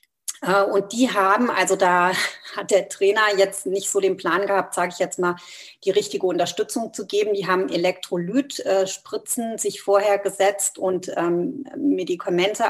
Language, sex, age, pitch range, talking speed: German, female, 30-49, 185-220 Hz, 145 wpm